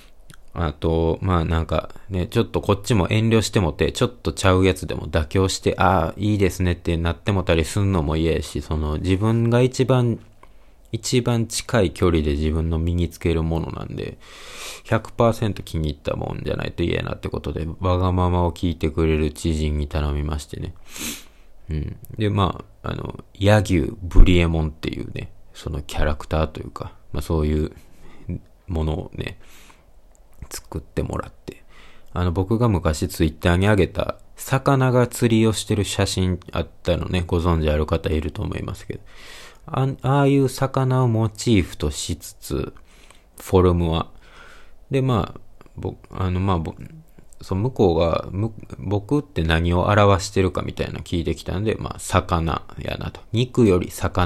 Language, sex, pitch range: Japanese, male, 80-110 Hz